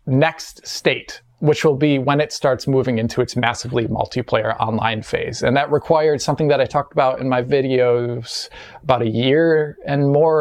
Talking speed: 180 wpm